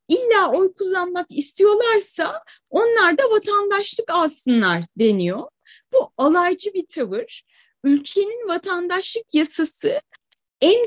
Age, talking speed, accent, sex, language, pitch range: 30-49, 95 wpm, native, female, Turkish, 280-390 Hz